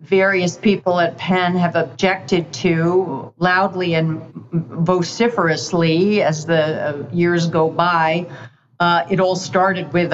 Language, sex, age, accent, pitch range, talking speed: English, female, 50-69, American, 160-180 Hz, 120 wpm